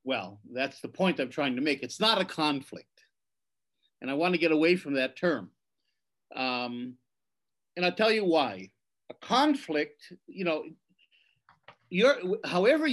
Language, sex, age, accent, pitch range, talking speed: English, male, 50-69, American, 160-230 Hz, 150 wpm